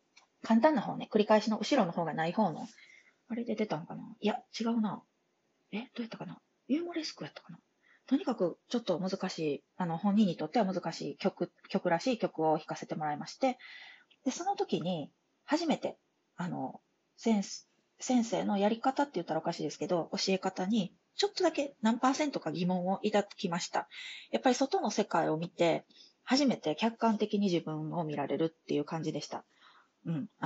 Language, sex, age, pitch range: Japanese, female, 20-39, 165-235 Hz